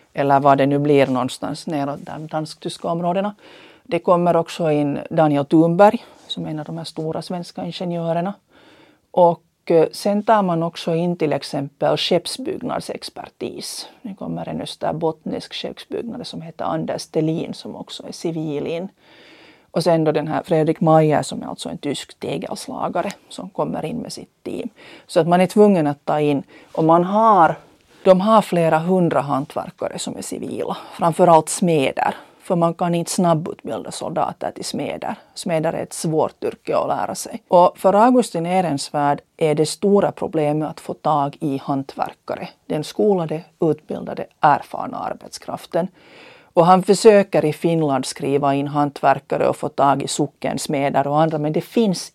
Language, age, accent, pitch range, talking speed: Swedish, 40-59, Finnish, 150-185 Hz, 160 wpm